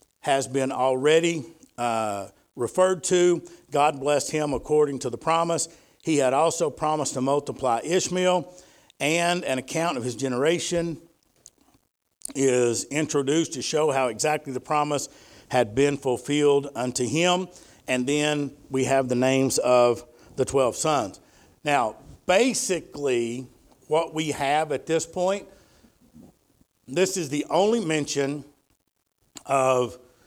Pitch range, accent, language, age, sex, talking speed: 125-165 Hz, American, English, 50-69, male, 125 wpm